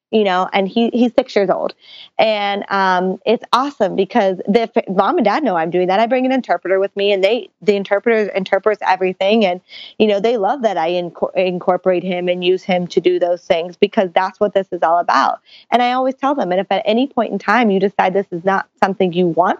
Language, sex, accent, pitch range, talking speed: English, female, American, 180-215 Hz, 235 wpm